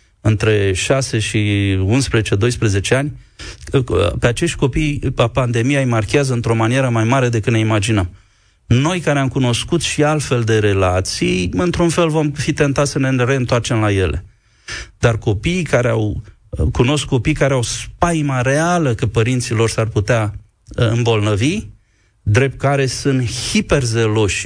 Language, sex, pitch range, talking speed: Romanian, male, 110-135 Hz, 135 wpm